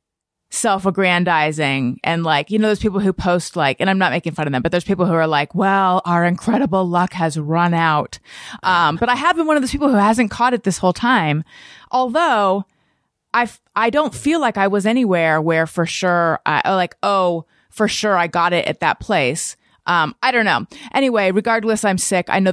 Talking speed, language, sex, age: 210 wpm, English, female, 30-49